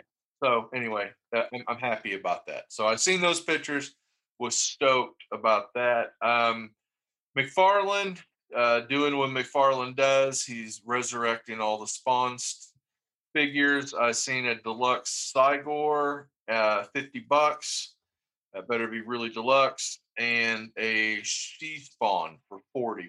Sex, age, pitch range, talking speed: male, 40-59, 110-145 Hz, 125 wpm